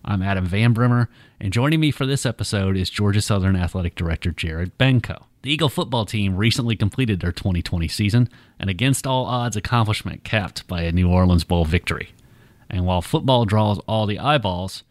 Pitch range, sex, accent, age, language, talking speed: 95-120 Hz, male, American, 30-49, English, 175 wpm